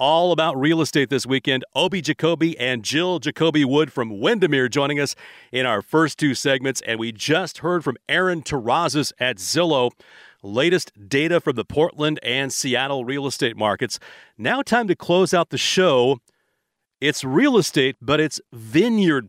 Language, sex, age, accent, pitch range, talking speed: English, male, 40-59, American, 130-165 Hz, 160 wpm